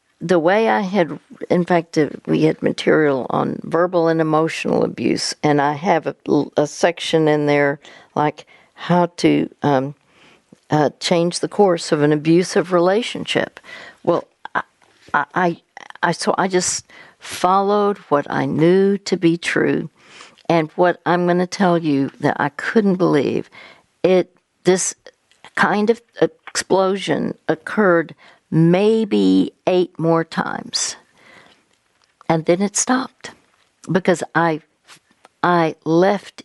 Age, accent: 60-79, American